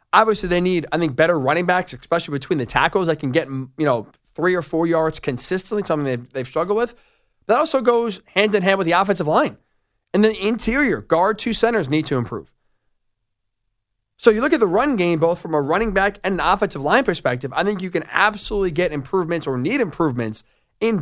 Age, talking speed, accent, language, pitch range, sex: 30-49, 210 wpm, American, English, 145-205 Hz, male